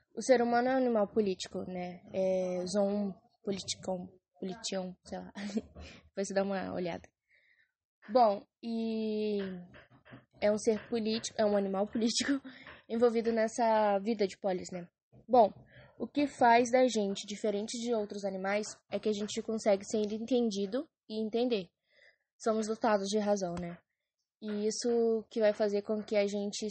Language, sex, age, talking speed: English, female, 10-29, 155 wpm